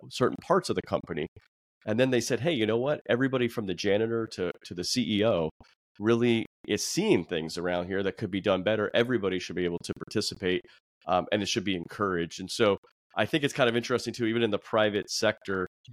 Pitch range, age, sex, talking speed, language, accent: 95-115 Hz, 30-49, male, 220 wpm, English, American